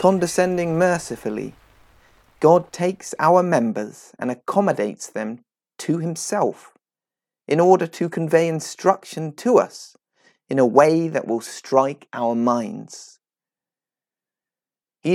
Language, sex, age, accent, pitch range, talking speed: English, male, 40-59, British, 155-205 Hz, 105 wpm